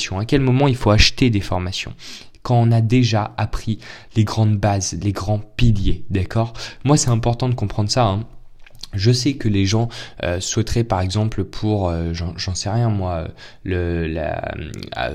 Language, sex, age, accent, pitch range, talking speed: French, male, 20-39, French, 100-125 Hz, 180 wpm